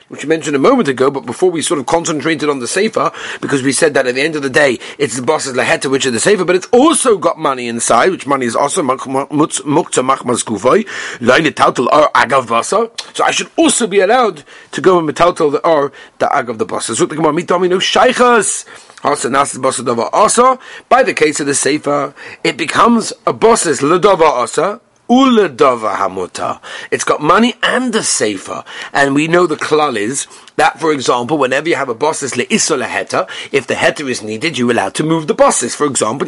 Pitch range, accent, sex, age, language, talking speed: 140-220 Hz, British, male, 40-59, English, 175 wpm